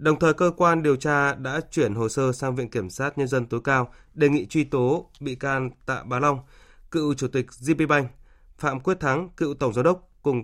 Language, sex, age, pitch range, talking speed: Vietnamese, male, 20-39, 115-145 Hz, 225 wpm